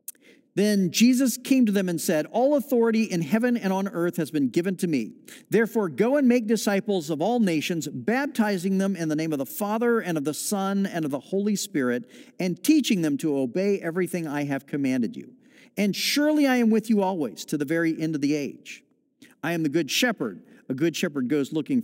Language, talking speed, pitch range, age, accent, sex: English, 215 wpm, 170-255 Hz, 50-69, American, male